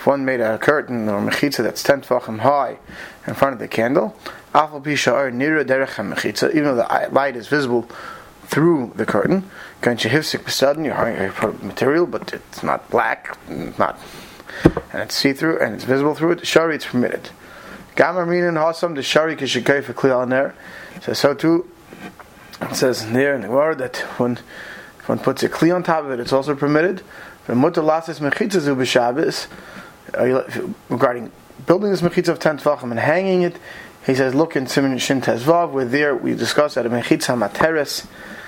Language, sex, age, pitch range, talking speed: English, male, 30-49, 130-160 Hz, 155 wpm